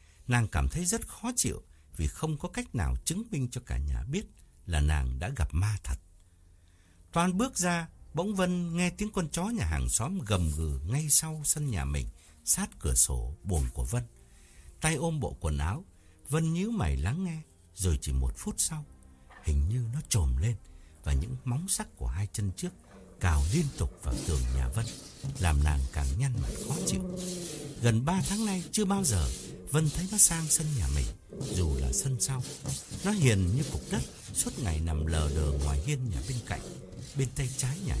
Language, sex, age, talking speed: Vietnamese, male, 60-79, 200 wpm